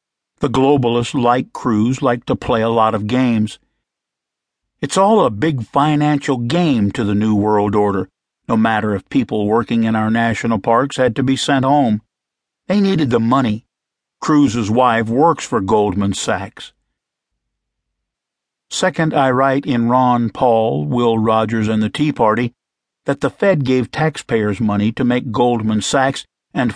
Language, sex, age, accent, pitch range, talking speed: English, male, 50-69, American, 110-140 Hz, 155 wpm